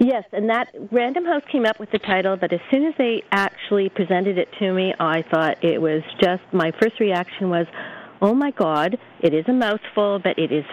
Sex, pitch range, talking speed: female, 180-225 Hz, 220 wpm